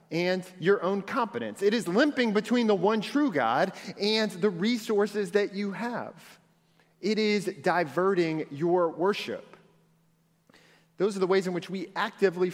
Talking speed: 150 wpm